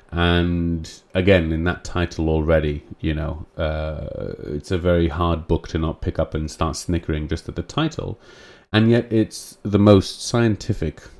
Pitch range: 80-100 Hz